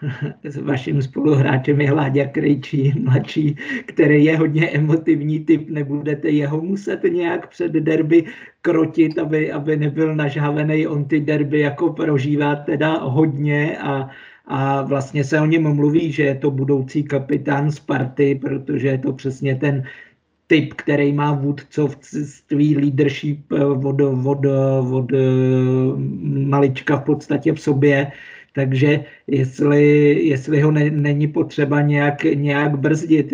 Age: 50-69